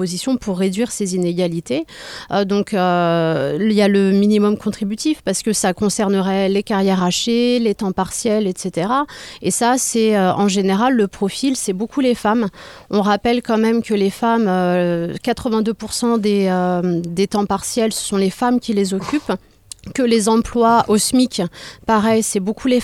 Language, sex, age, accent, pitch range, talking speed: French, female, 30-49, French, 190-235 Hz, 175 wpm